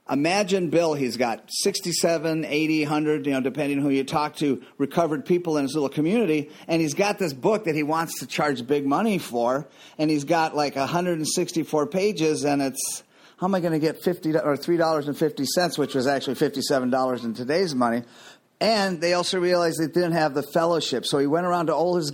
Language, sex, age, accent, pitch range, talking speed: English, male, 40-59, American, 150-190 Hz, 215 wpm